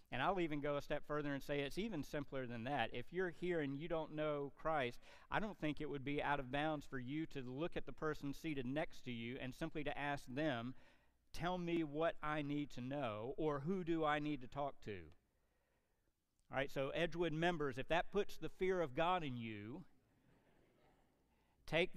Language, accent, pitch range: English, American, 115-155 Hz